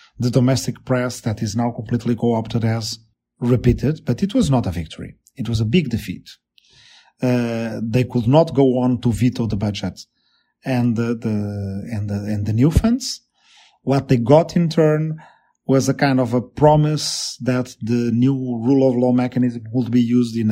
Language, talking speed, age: English, 170 wpm, 40-59